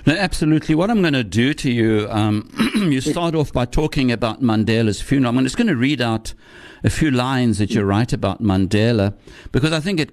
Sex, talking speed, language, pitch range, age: male, 215 wpm, English, 110-145 Hz, 60-79